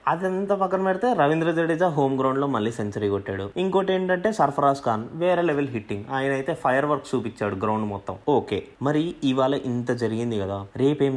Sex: male